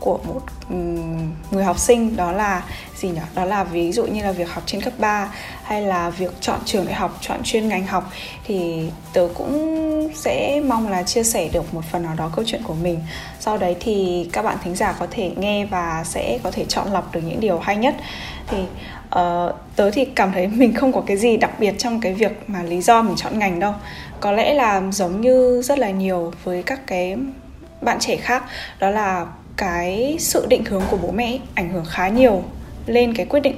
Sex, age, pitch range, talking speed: female, 10-29, 180-240 Hz, 220 wpm